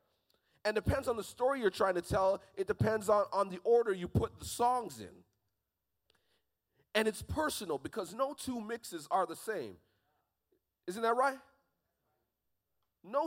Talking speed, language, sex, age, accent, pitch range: 160 wpm, English, male, 30-49, American, 180-250 Hz